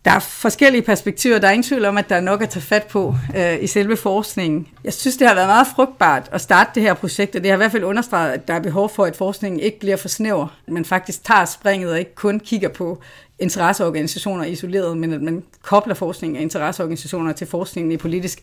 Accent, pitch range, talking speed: native, 170-205 Hz, 240 wpm